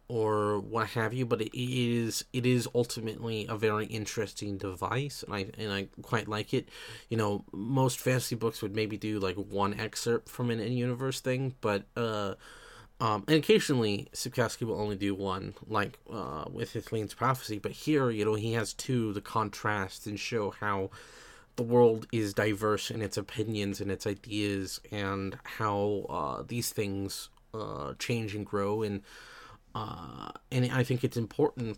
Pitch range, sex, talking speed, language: 105-120 Hz, male, 170 wpm, English